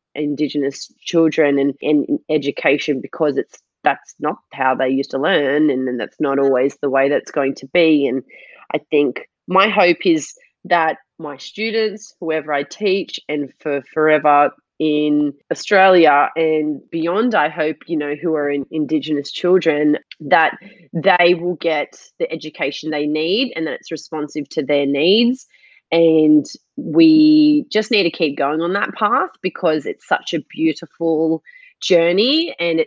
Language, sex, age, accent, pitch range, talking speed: English, female, 20-39, Australian, 150-185 Hz, 155 wpm